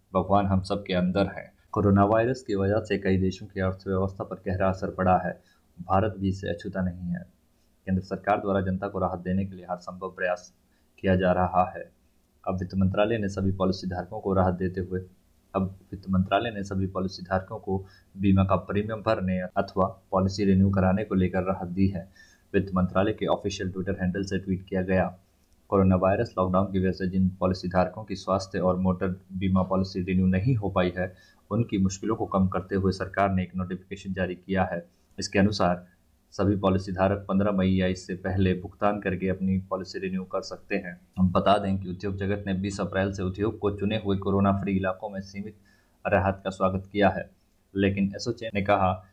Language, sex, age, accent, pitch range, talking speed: Hindi, male, 20-39, native, 95-100 Hz, 200 wpm